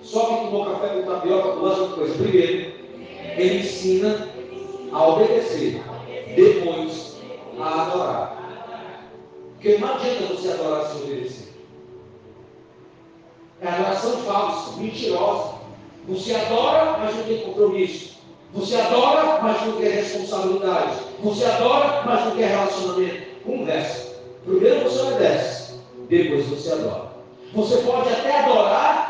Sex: male